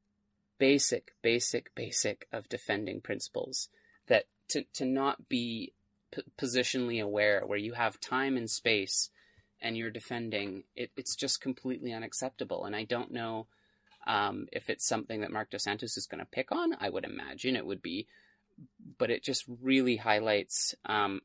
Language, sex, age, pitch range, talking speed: English, male, 30-49, 105-125 Hz, 160 wpm